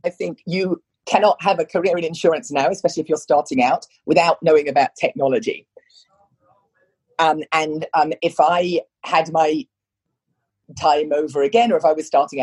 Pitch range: 145-190 Hz